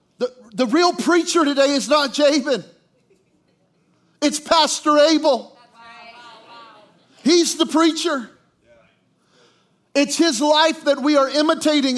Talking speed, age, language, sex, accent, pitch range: 105 wpm, 40-59, English, male, American, 275-335 Hz